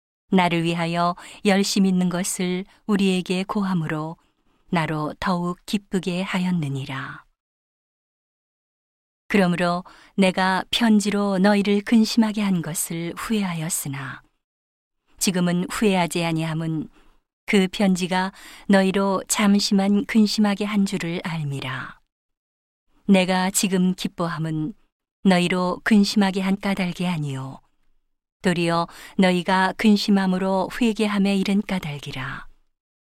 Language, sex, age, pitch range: Korean, female, 40-59, 170-200 Hz